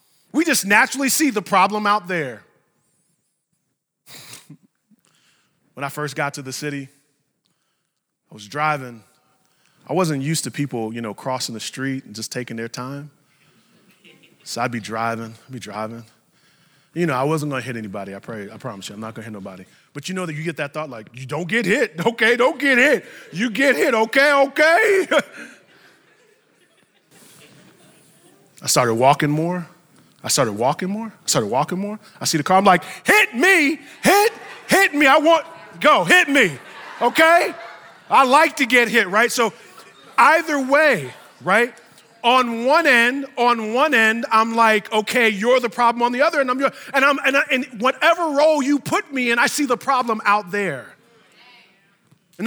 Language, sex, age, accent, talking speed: English, male, 30-49, American, 175 wpm